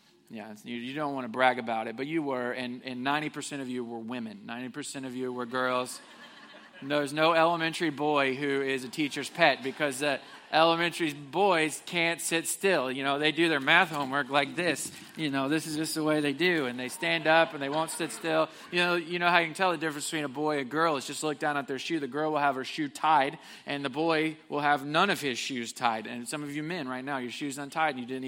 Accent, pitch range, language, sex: American, 145-185 Hz, English, male